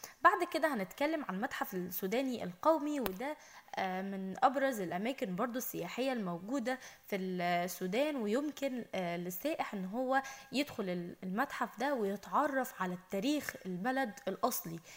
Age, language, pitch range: 10-29, Arabic, 195-275 Hz